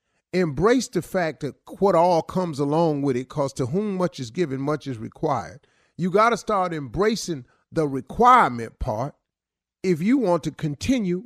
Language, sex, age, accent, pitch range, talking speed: English, male, 40-59, American, 125-180 Hz, 170 wpm